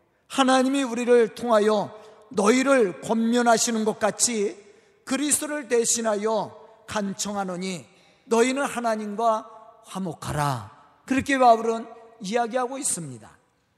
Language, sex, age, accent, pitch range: Korean, male, 40-59, native, 215-275 Hz